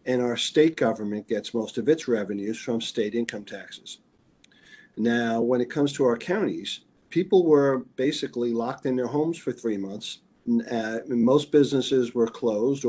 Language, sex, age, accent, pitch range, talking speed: English, male, 50-69, American, 110-130 Hz, 165 wpm